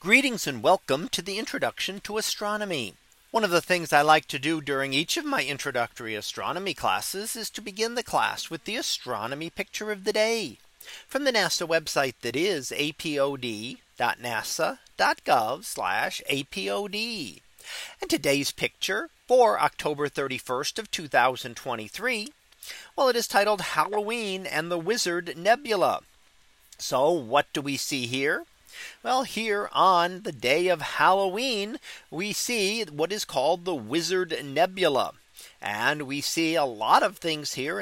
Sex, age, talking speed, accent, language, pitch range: male, 40-59, 145 wpm, American, English, 150-220 Hz